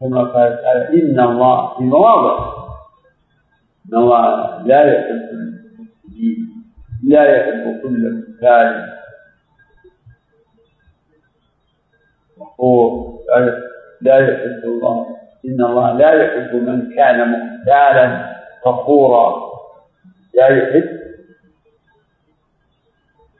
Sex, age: male, 50-69